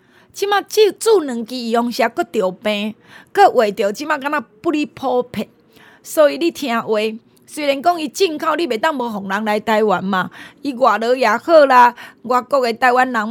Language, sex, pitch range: Chinese, female, 215-295 Hz